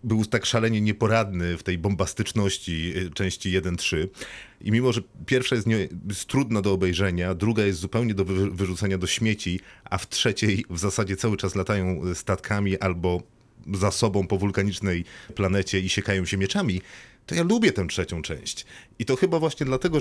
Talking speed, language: 165 wpm, Polish